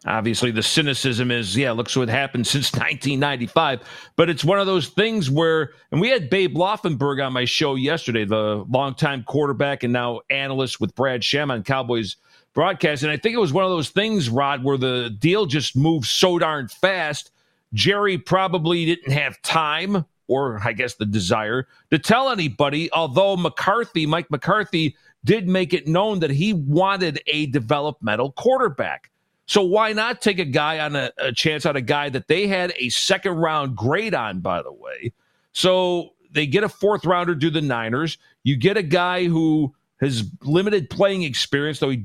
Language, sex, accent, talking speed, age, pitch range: English, male, American, 185 wpm, 50-69, 135-185 Hz